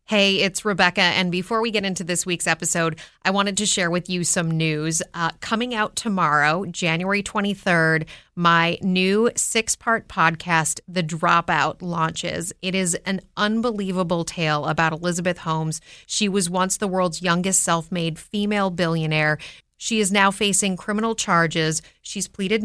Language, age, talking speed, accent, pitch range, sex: English, 30-49, 150 wpm, American, 165-190 Hz, female